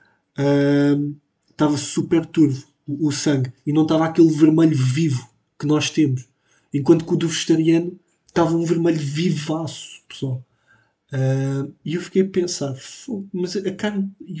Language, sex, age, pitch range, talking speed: Portuguese, male, 20-39, 140-175 Hz, 150 wpm